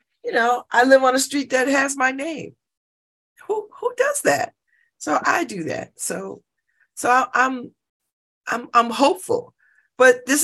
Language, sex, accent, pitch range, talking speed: English, female, American, 190-285 Hz, 160 wpm